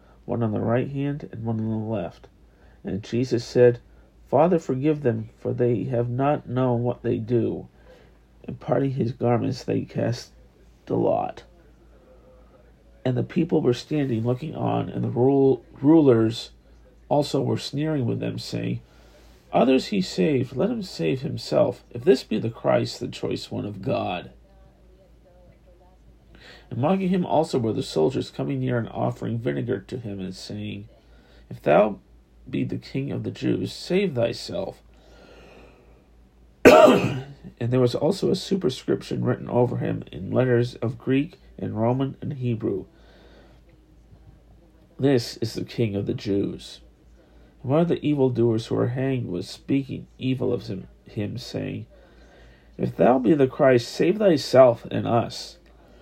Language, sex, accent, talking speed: English, male, American, 145 wpm